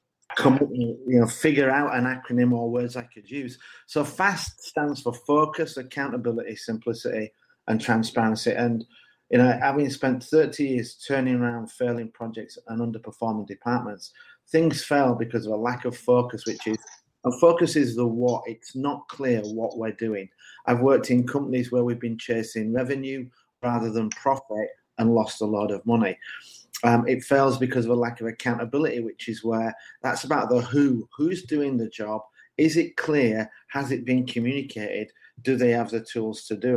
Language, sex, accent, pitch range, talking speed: English, male, British, 115-135 Hz, 175 wpm